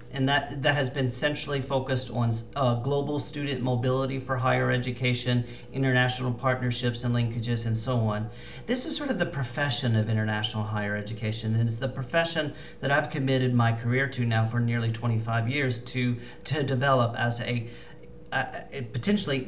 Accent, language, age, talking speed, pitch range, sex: American, English, 40-59, 170 wpm, 115-135 Hz, male